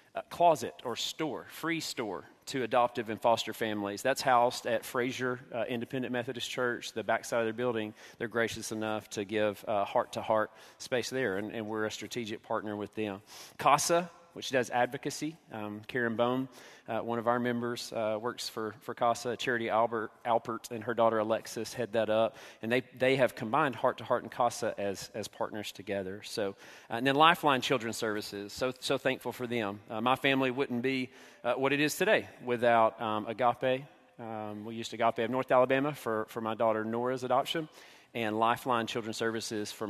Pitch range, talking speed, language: 110-130 Hz, 185 wpm, English